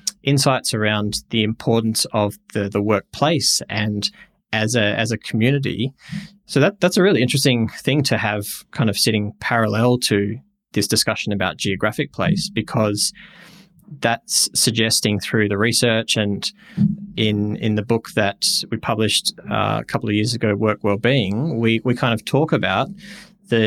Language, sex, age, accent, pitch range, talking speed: English, male, 20-39, Australian, 105-135 Hz, 155 wpm